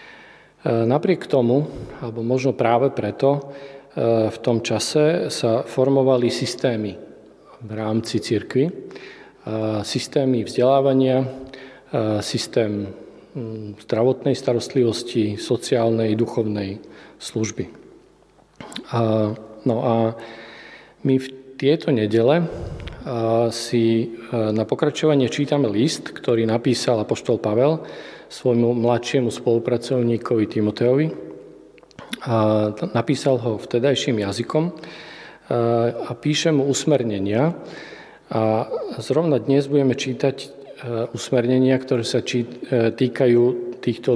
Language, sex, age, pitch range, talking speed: Slovak, male, 40-59, 110-130 Hz, 85 wpm